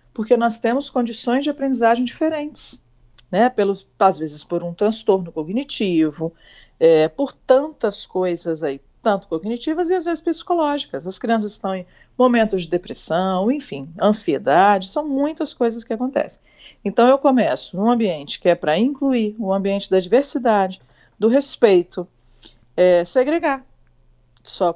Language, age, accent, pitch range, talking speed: Portuguese, 50-69, Brazilian, 180-240 Hz, 140 wpm